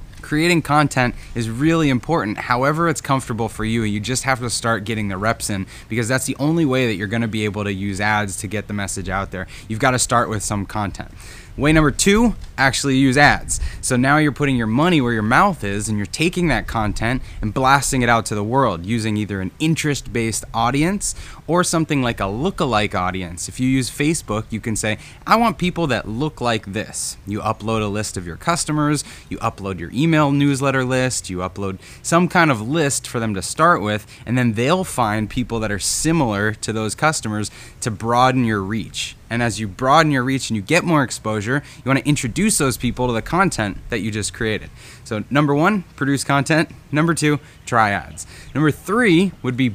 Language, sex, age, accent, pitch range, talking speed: English, male, 20-39, American, 105-145 Hz, 210 wpm